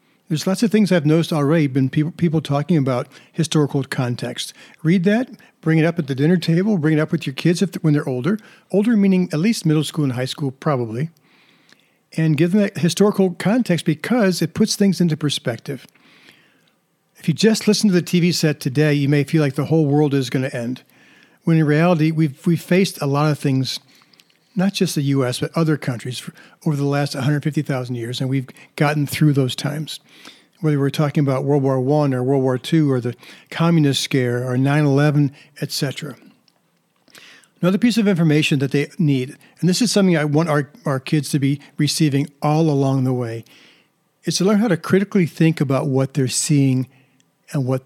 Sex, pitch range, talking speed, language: male, 140-170 Hz, 195 wpm, English